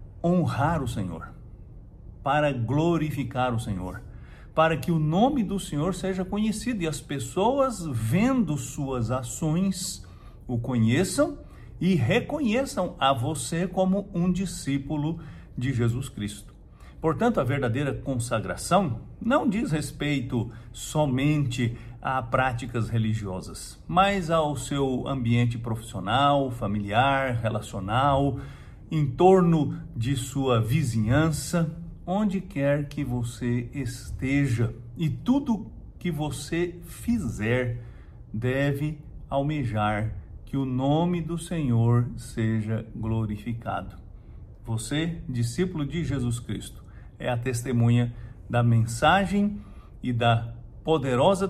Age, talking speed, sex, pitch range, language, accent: 50-69, 105 wpm, male, 115-160 Hz, English, Brazilian